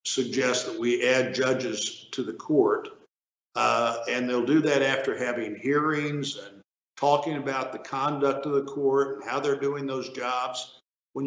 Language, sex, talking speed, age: English, male, 165 wpm, 60-79